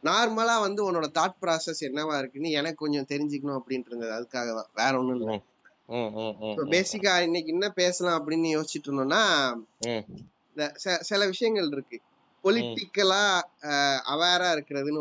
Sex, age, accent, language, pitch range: male, 20-39, native, Tamil, 135-190 Hz